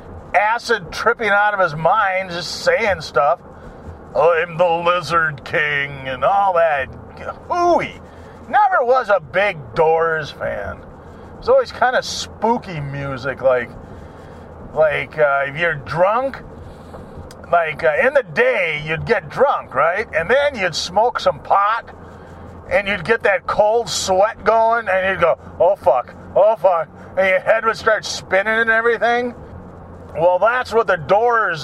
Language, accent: English, American